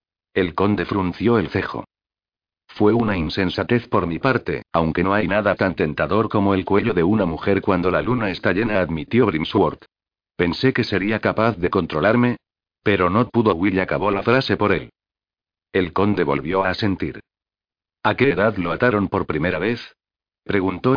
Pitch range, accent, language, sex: 95-115 Hz, Spanish, Spanish, male